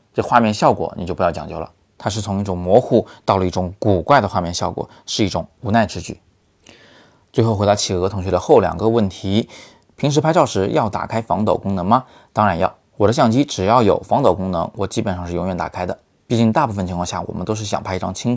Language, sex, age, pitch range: Chinese, male, 20-39, 90-115 Hz